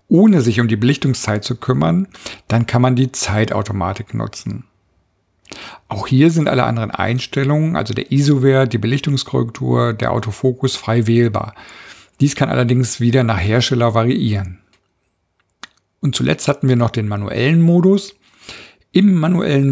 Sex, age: male, 50-69